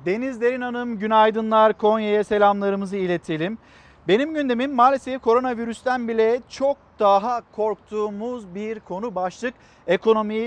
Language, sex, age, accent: Turkish, male, 50-69, native